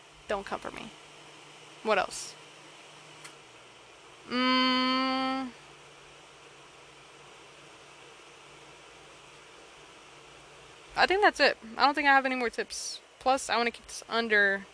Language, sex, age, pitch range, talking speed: English, female, 20-39, 205-260 Hz, 105 wpm